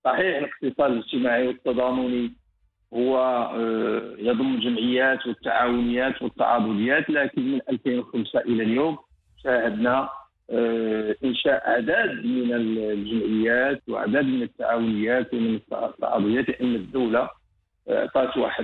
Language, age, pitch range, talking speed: English, 50-69, 115-135 Hz, 85 wpm